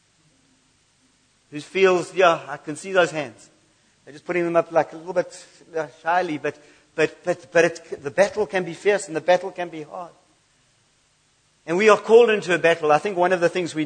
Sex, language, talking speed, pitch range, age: male, English, 205 wpm, 150-175 Hz, 50-69